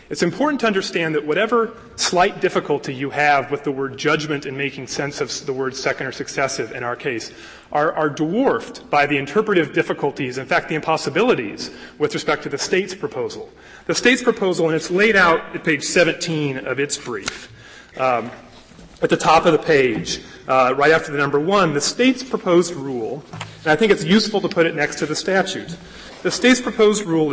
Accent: American